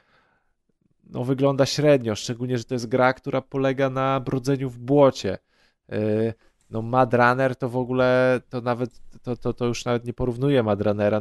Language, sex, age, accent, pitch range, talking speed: Polish, male, 20-39, native, 115-135 Hz, 165 wpm